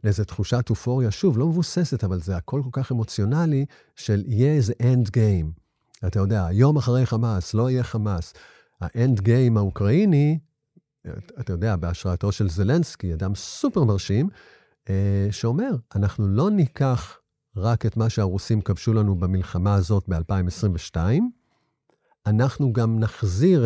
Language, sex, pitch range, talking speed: Hebrew, male, 95-125 Hz, 130 wpm